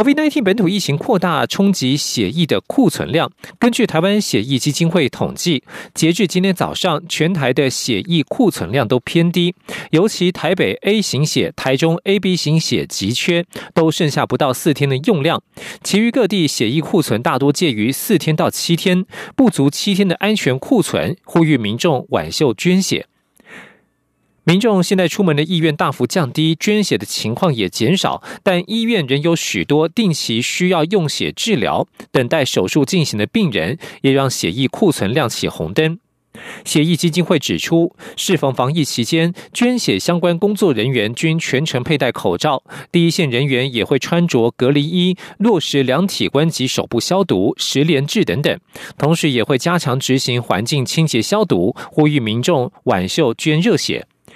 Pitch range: 140-185 Hz